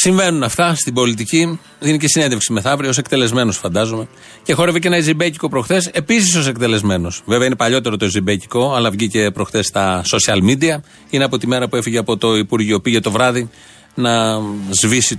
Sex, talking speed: male, 180 wpm